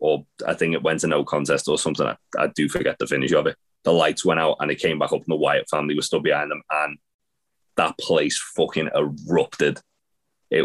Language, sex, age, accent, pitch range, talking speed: English, male, 20-39, British, 75-95 Hz, 230 wpm